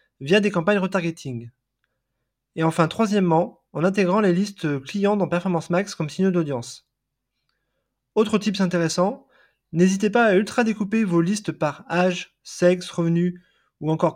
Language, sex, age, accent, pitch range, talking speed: French, male, 20-39, French, 160-205 Hz, 145 wpm